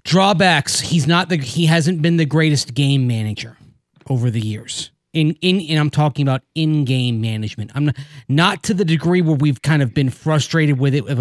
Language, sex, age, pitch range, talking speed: English, male, 30-49, 130-155 Hz, 200 wpm